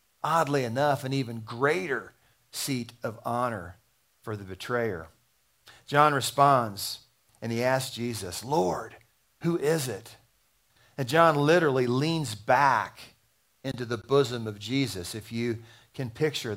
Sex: male